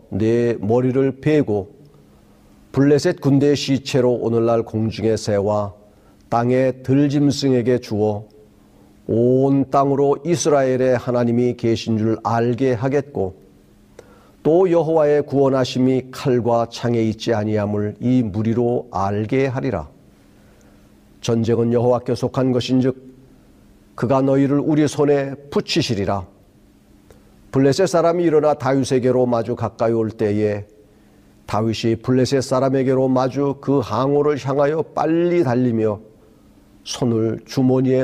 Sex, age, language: male, 40-59, Korean